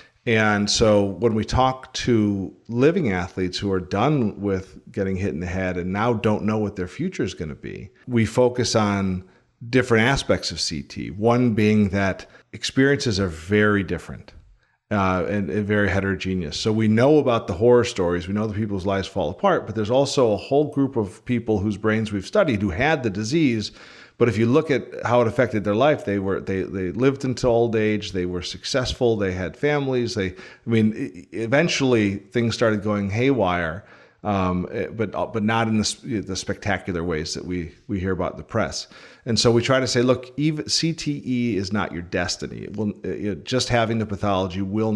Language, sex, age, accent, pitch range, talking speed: English, male, 40-59, American, 95-120 Hz, 200 wpm